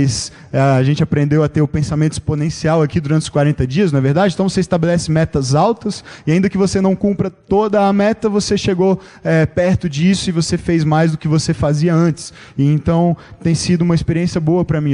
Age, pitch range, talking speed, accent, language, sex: 20-39, 150-185 Hz, 215 wpm, Brazilian, Portuguese, male